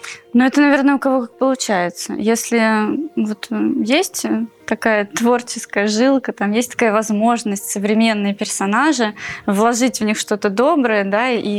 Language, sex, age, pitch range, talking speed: Russian, female, 20-39, 210-255 Hz, 135 wpm